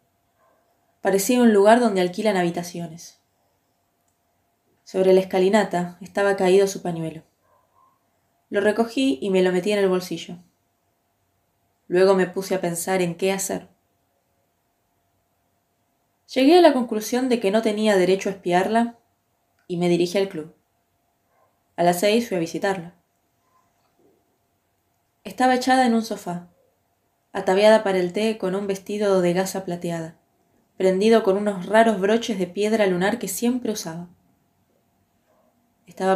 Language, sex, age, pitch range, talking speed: Spanish, female, 20-39, 165-210 Hz, 130 wpm